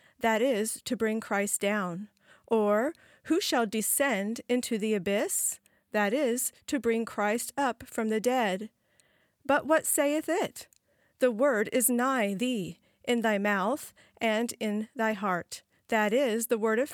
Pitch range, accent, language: 215-265 Hz, American, English